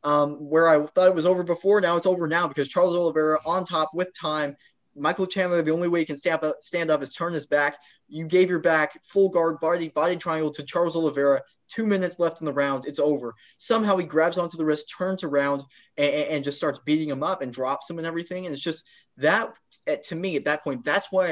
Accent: American